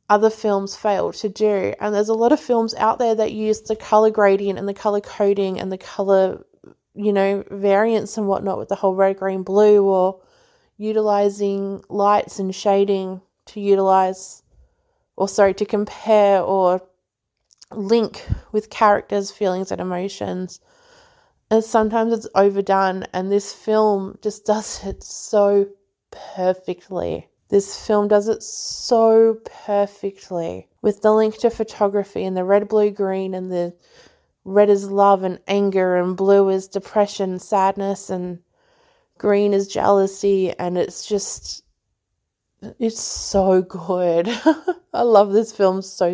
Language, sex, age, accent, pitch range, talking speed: English, female, 20-39, Australian, 190-215 Hz, 140 wpm